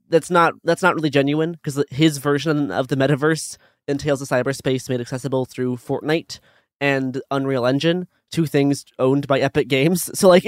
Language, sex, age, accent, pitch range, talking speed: English, male, 20-39, American, 130-155 Hz, 170 wpm